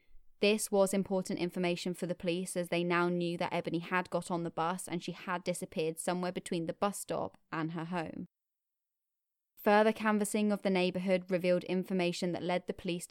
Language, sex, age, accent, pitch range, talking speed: English, female, 20-39, British, 170-195 Hz, 190 wpm